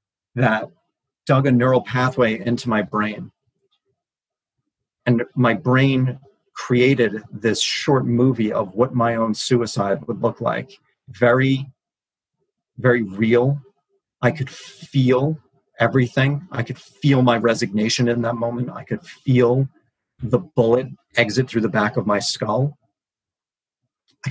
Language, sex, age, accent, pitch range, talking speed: English, male, 40-59, American, 120-135 Hz, 125 wpm